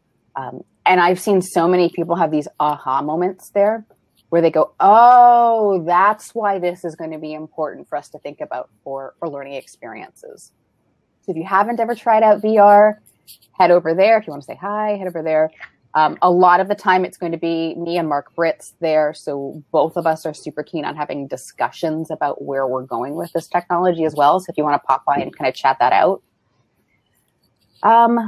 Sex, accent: female, American